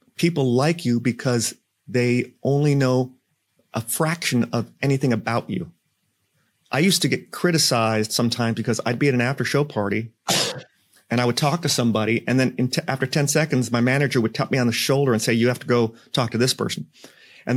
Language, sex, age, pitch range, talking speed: English, male, 30-49, 115-140 Hz, 195 wpm